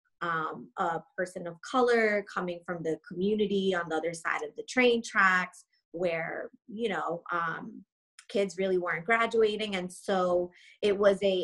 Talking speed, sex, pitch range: 155 wpm, female, 175-215 Hz